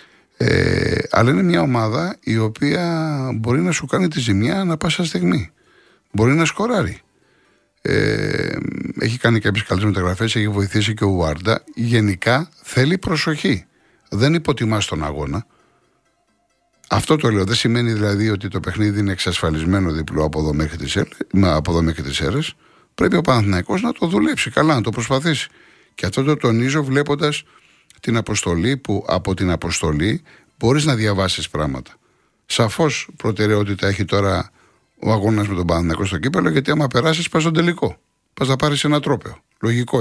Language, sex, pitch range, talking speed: Greek, male, 95-140 Hz, 155 wpm